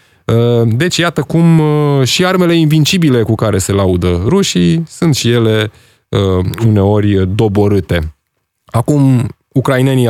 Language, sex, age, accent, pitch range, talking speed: Romanian, male, 20-39, native, 95-125 Hz, 105 wpm